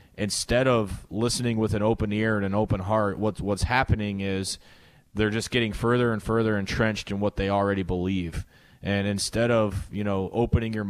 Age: 20-39